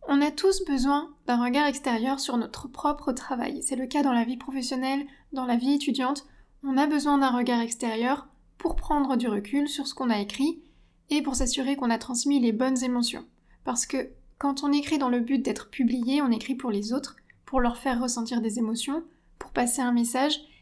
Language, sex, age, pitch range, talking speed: French, female, 20-39, 240-285 Hz, 205 wpm